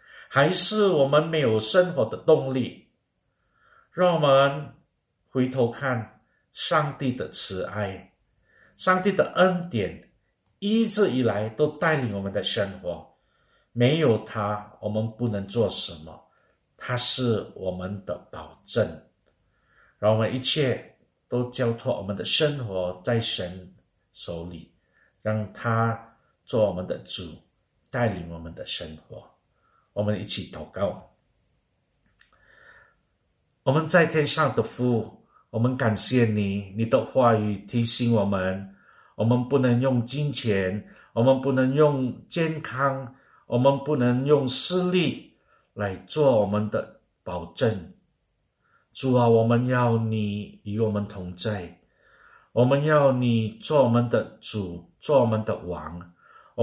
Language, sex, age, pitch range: Indonesian, male, 50-69, 105-135 Hz